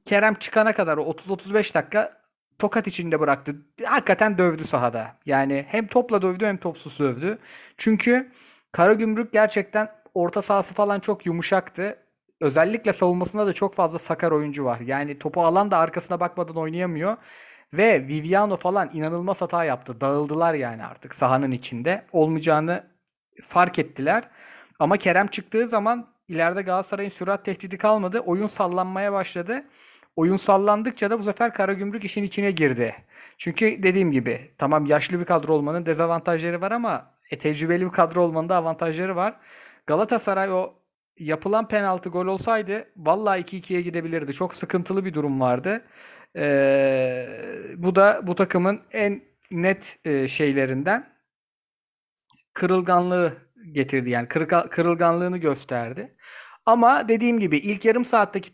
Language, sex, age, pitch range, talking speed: Turkish, male, 40-59, 160-205 Hz, 130 wpm